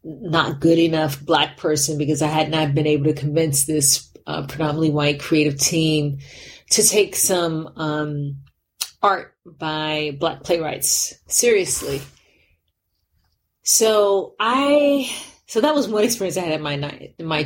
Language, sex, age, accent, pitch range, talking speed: English, female, 40-59, American, 140-175 Hz, 145 wpm